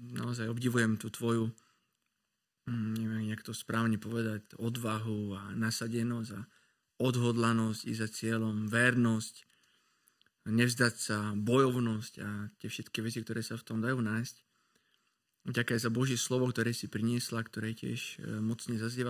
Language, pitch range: Slovak, 115-130 Hz